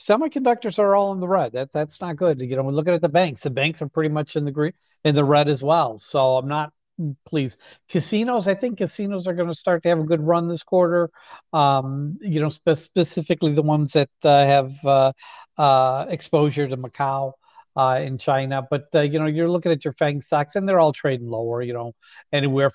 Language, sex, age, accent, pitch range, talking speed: English, male, 50-69, American, 135-175 Hz, 225 wpm